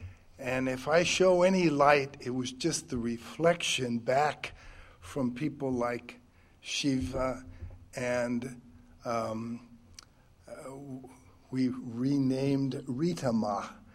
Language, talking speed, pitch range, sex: English, 95 wpm, 120-150 Hz, male